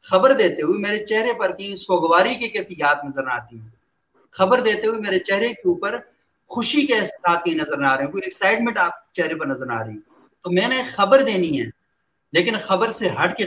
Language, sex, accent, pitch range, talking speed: English, male, Indian, 160-220 Hz, 205 wpm